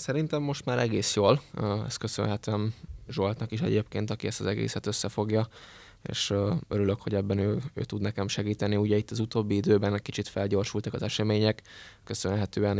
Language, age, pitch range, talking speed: Hungarian, 20-39, 100-110 Hz, 160 wpm